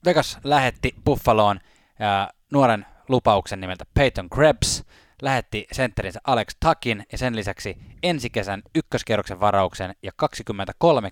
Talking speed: 120 wpm